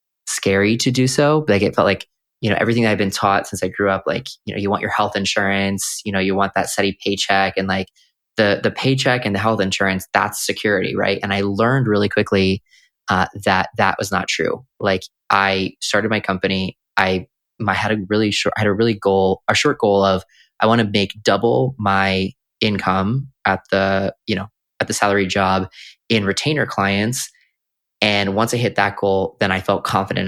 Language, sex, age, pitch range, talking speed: English, male, 20-39, 95-110 Hz, 210 wpm